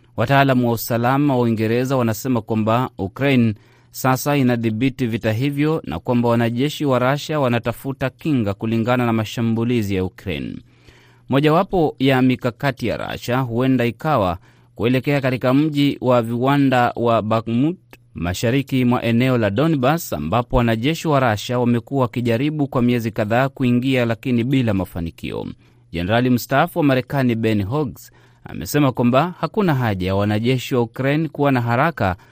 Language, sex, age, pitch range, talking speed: Swahili, male, 30-49, 115-135 Hz, 135 wpm